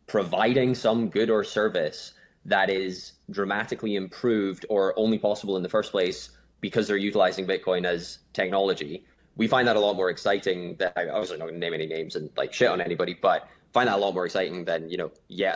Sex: male